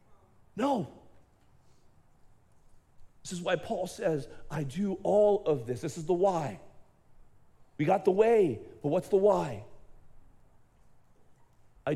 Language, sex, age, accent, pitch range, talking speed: English, male, 40-59, American, 125-180 Hz, 120 wpm